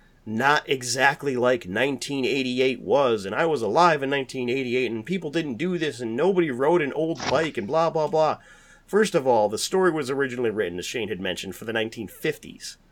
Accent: American